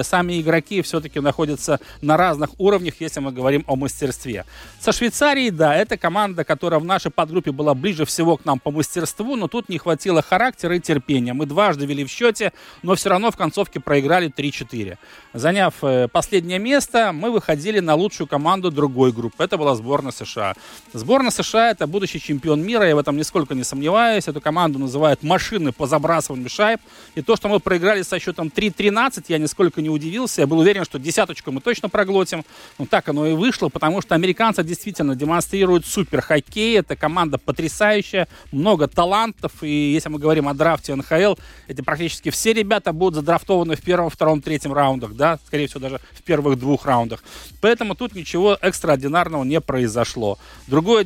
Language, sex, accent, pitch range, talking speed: Russian, male, native, 145-190 Hz, 175 wpm